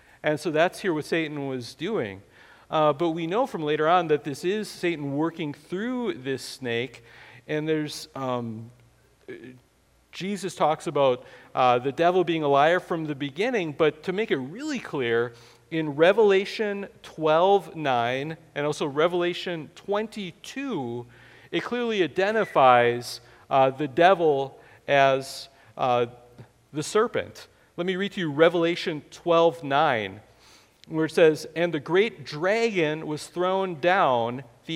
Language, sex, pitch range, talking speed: English, male, 130-175 Hz, 140 wpm